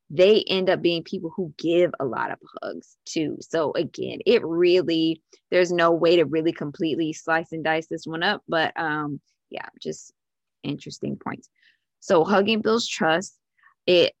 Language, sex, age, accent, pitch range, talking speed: English, female, 20-39, American, 160-185 Hz, 165 wpm